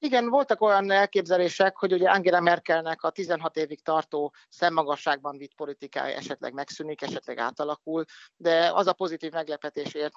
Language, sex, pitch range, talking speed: Hungarian, male, 140-175 Hz, 150 wpm